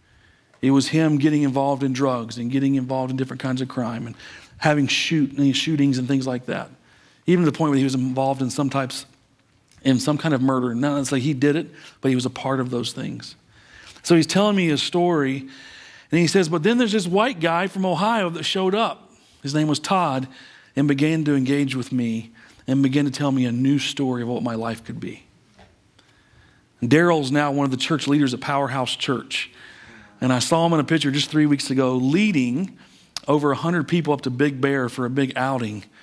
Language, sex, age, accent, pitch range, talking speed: English, male, 40-59, American, 130-165 Hz, 220 wpm